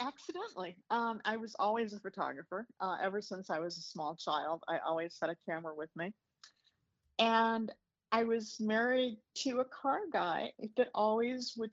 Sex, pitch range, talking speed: female, 185-235 Hz, 170 wpm